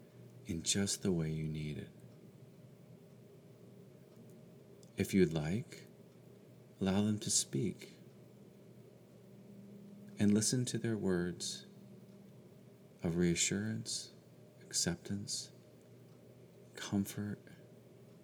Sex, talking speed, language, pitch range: male, 75 wpm, English, 80-100 Hz